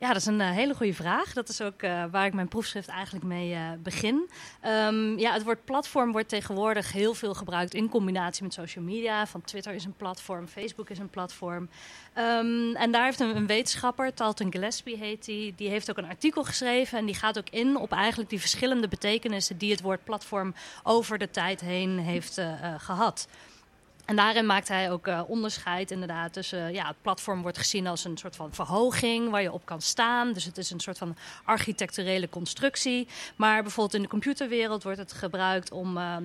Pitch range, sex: 185-230 Hz, female